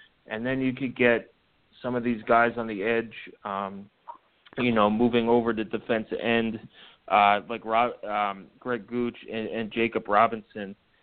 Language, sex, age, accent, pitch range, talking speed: English, male, 30-49, American, 115-130 Hz, 160 wpm